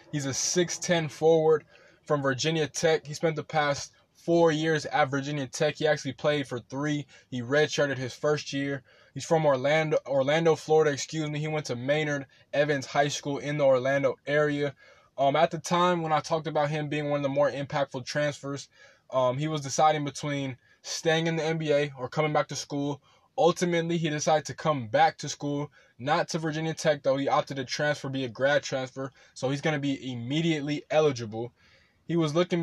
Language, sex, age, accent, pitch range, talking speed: English, male, 20-39, American, 140-160 Hz, 190 wpm